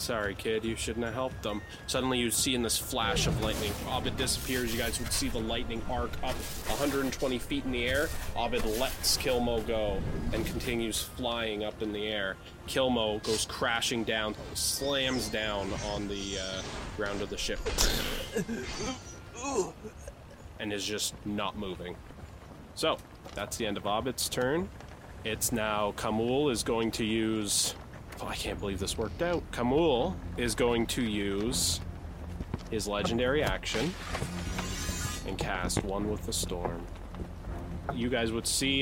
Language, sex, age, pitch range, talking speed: English, male, 20-39, 90-120 Hz, 150 wpm